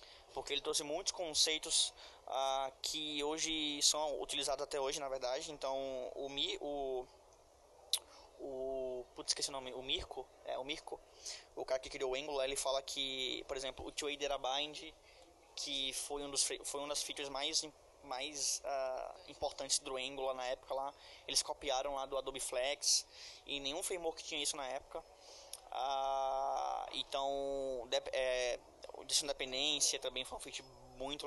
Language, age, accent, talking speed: Portuguese, 10-29, Brazilian, 160 wpm